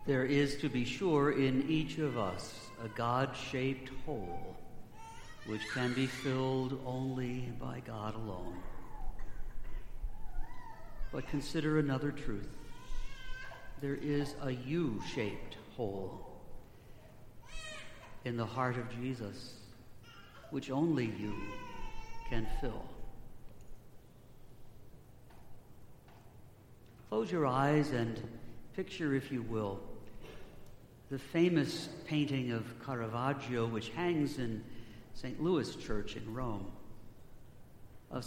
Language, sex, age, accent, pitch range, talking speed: English, male, 60-79, American, 115-135 Hz, 95 wpm